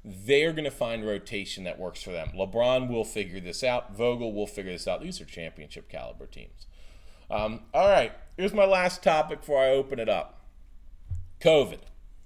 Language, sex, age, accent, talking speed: English, male, 40-59, American, 180 wpm